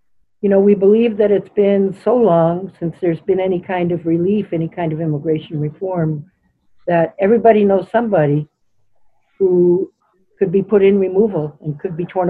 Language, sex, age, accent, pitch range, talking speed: English, female, 60-79, American, 160-195 Hz, 170 wpm